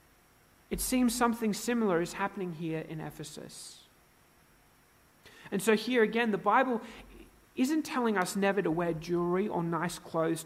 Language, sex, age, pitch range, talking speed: English, male, 30-49, 165-215 Hz, 145 wpm